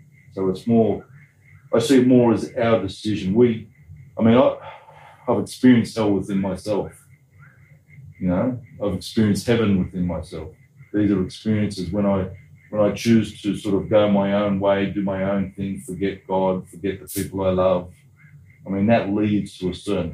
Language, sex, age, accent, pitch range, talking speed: English, male, 30-49, Australian, 90-115 Hz, 175 wpm